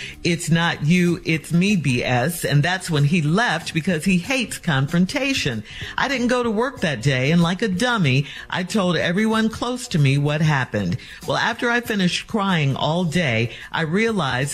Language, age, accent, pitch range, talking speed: English, 50-69, American, 145-195 Hz, 180 wpm